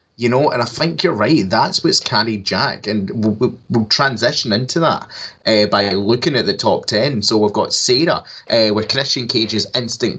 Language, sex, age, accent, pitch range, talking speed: English, male, 20-39, British, 105-125 Hz, 200 wpm